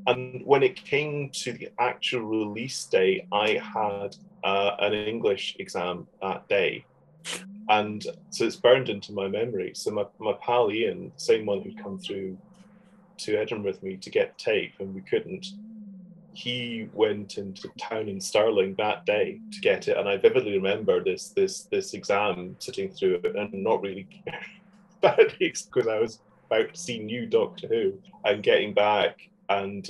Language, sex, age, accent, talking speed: English, male, 30-49, British, 165 wpm